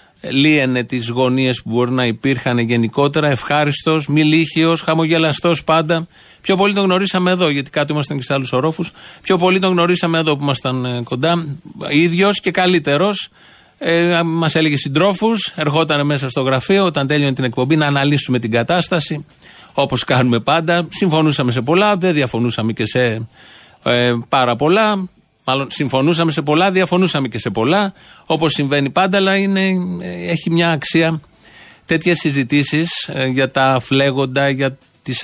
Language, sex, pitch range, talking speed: Greek, male, 135-170 Hz, 150 wpm